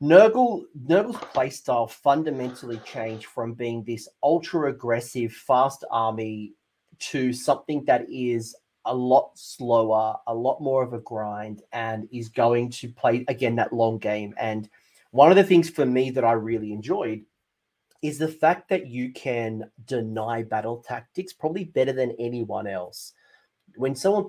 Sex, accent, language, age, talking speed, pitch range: male, Australian, English, 30-49, 150 wpm, 115-140 Hz